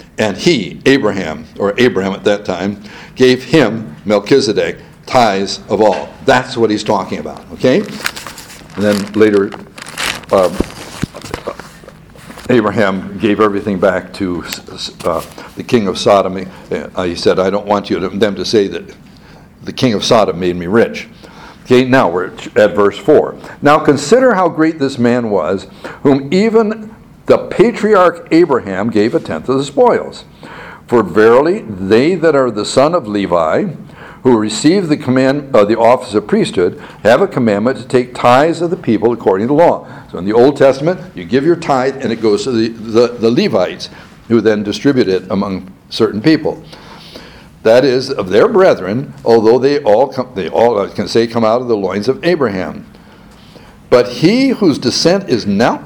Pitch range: 105-145 Hz